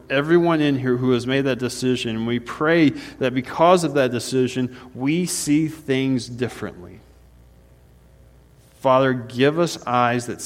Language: English